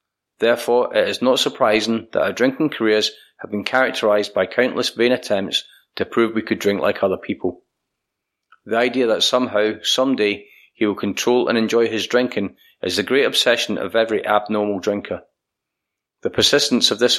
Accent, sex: British, male